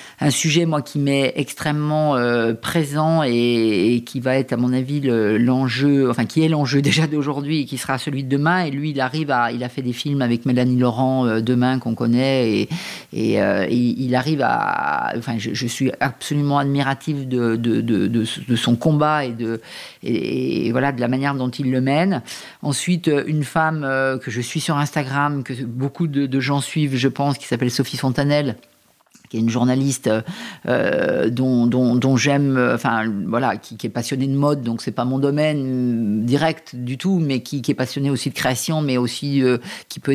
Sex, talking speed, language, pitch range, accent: female, 210 wpm, French, 125-145 Hz, French